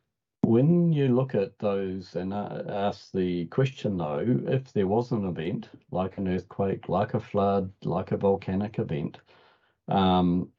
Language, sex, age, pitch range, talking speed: English, male, 50-69, 85-120 Hz, 155 wpm